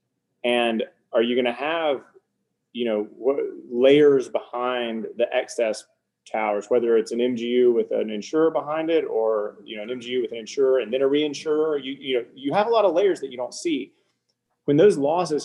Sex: male